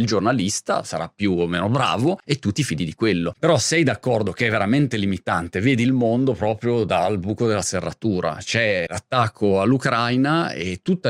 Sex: male